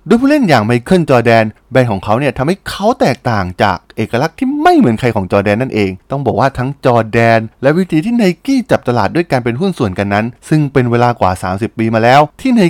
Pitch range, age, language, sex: 100-150 Hz, 20-39, Thai, male